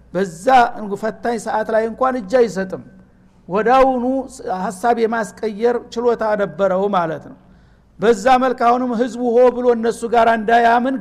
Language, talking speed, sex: Amharic, 120 wpm, male